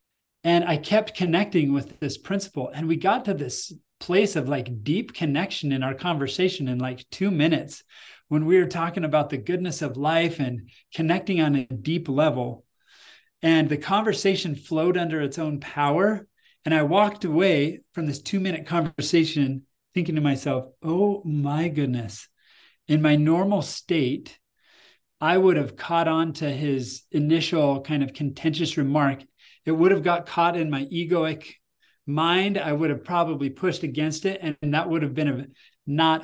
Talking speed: 170 wpm